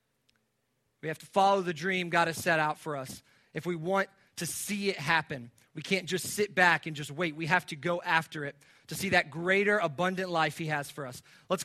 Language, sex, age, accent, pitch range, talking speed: English, male, 30-49, American, 160-205 Hz, 225 wpm